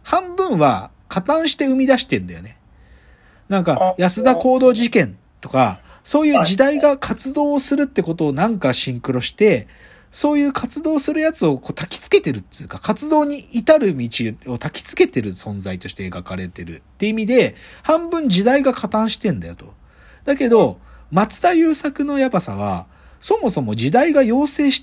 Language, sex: Japanese, male